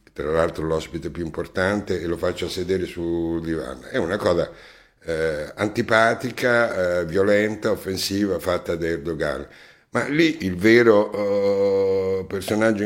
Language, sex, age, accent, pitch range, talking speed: Italian, male, 60-79, native, 90-120 Hz, 130 wpm